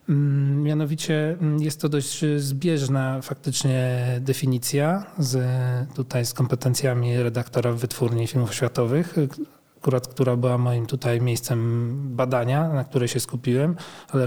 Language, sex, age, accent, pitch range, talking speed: Polish, male, 40-59, native, 120-145 Hz, 115 wpm